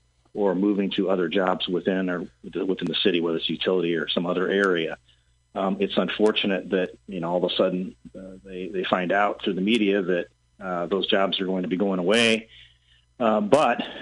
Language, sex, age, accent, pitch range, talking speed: English, male, 40-59, American, 85-100 Hz, 200 wpm